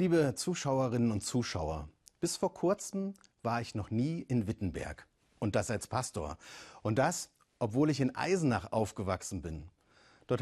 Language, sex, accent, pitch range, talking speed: German, male, German, 105-165 Hz, 150 wpm